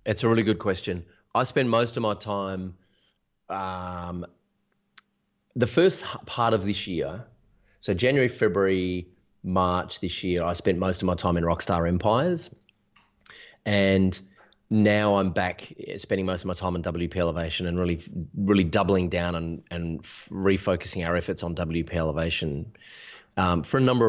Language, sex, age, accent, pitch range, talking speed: English, male, 30-49, Australian, 85-100 Hz, 155 wpm